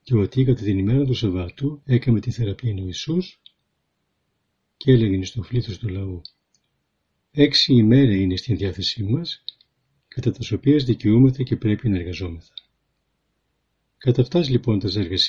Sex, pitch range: male, 95-130 Hz